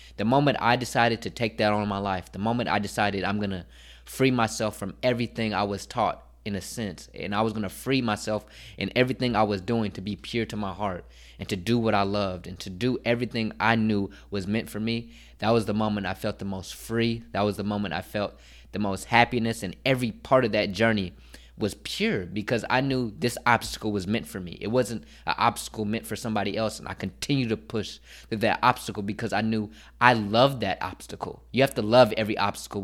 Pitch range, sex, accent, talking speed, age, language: 100-115 Hz, male, American, 230 wpm, 20-39, English